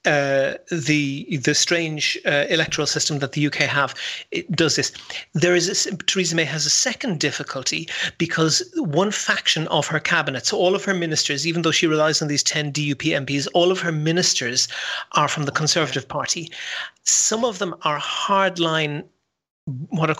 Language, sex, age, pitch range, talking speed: English, male, 30-49, 145-175 Hz, 175 wpm